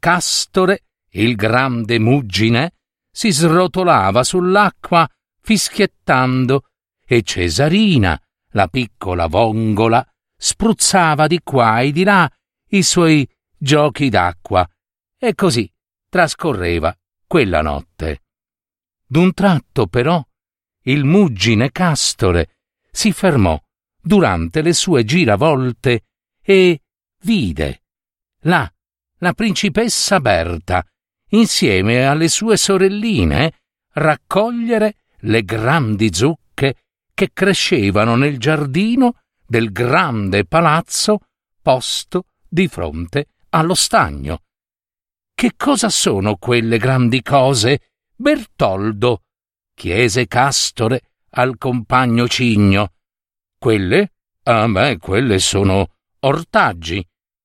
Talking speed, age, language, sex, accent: 85 wpm, 50-69, Italian, male, native